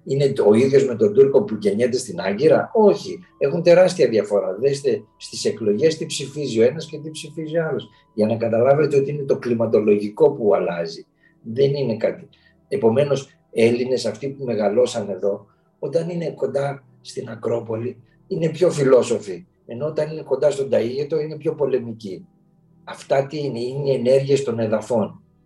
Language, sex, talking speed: Greek, male, 165 wpm